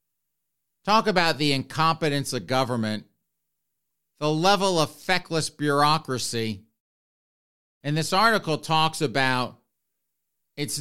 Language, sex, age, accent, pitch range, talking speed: English, male, 50-69, American, 125-155 Hz, 95 wpm